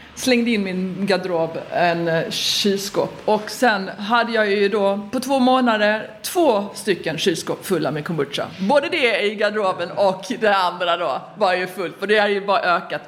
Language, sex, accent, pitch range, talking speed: Swedish, female, native, 170-225 Hz, 175 wpm